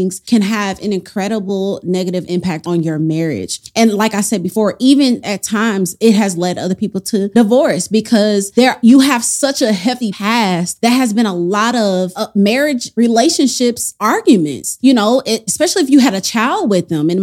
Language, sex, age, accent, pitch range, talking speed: English, female, 30-49, American, 185-255 Hz, 190 wpm